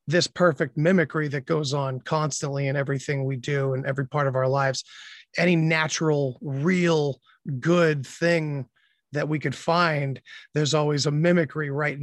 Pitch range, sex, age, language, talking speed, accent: 145-180 Hz, male, 30-49, English, 155 wpm, American